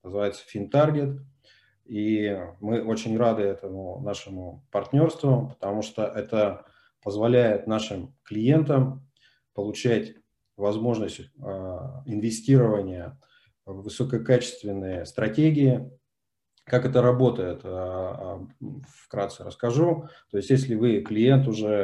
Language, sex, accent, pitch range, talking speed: Russian, male, native, 100-125 Hz, 90 wpm